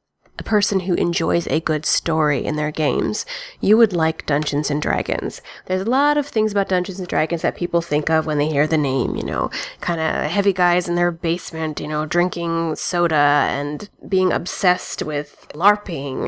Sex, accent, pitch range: female, American, 155-195 Hz